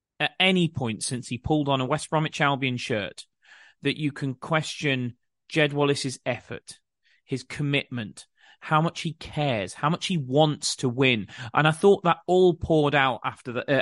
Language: English